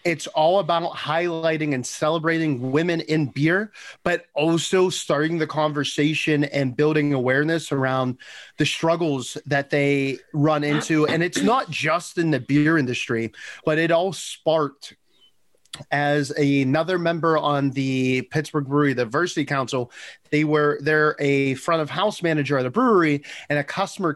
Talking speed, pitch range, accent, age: 150 wpm, 145-170 Hz, American, 30-49